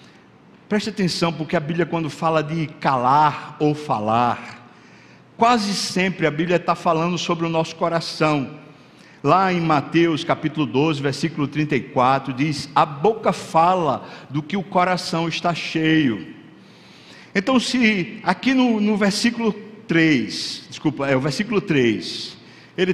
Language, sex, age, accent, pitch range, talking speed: Portuguese, male, 60-79, Brazilian, 150-205 Hz, 135 wpm